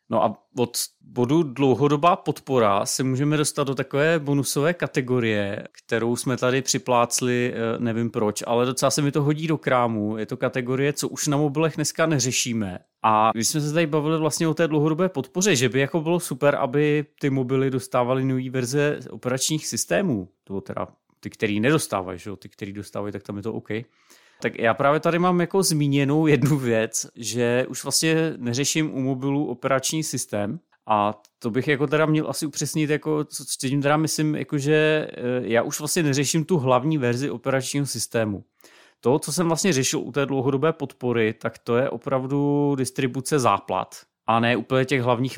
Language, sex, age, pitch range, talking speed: Czech, male, 30-49, 110-145 Hz, 175 wpm